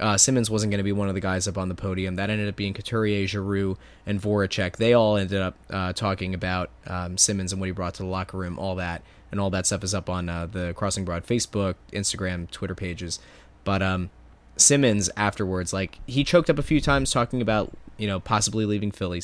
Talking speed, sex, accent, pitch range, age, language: 230 wpm, male, American, 90-110 Hz, 20-39, English